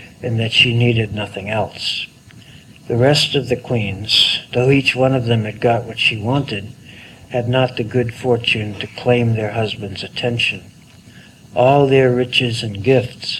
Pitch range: 110-125 Hz